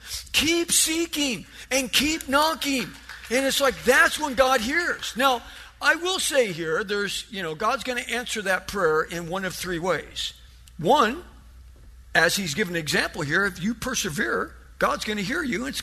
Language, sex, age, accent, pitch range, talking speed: English, male, 50-69, American, 210-295 Hz, 180 wpm